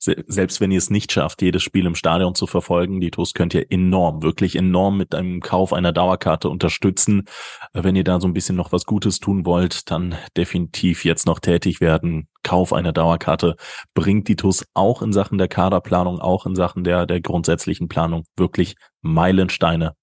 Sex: male